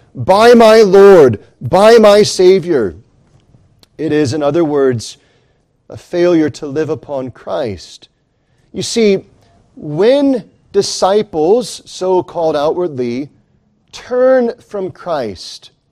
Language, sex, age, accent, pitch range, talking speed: English, male, 40-59, American, 135-190 Hz, 100 wpm